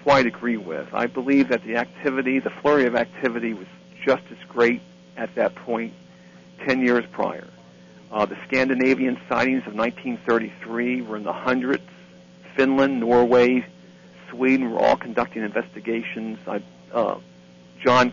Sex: male